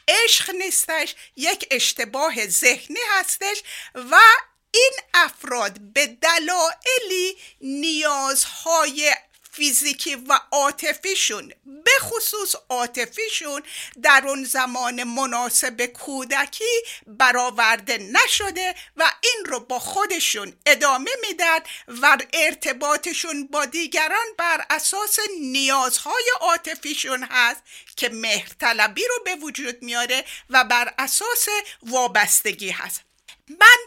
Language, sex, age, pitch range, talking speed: Persian, female, 50-69, 255-390 Hz, 95 wpm